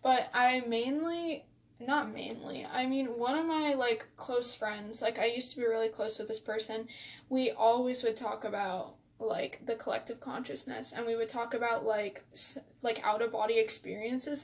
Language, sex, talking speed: English, female, 175 wpm